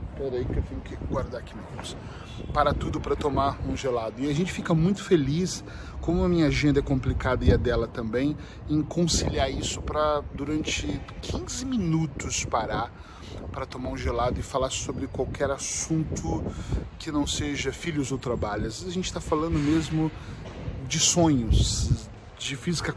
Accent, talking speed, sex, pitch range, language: Brazilian, 165 wpm, male, 110-145 Hz, Portuguese